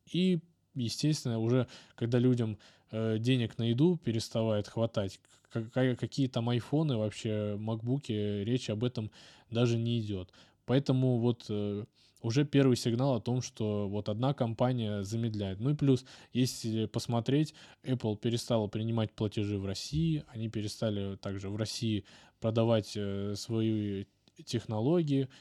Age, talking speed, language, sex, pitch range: 20-39, 130 wpm, Russian, male, 105-130 Hz